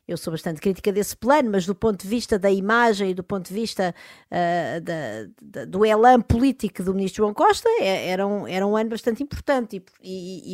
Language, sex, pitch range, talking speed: Portuguese, female, 175-220 Hz, 180 wpm